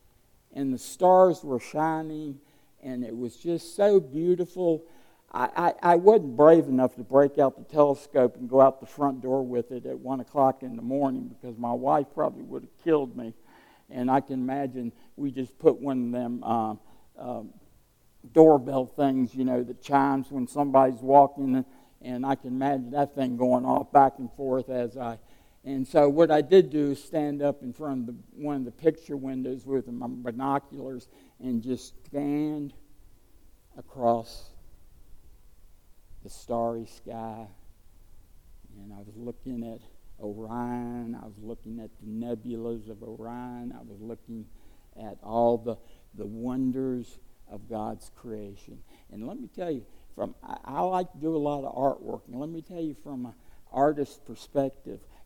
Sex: male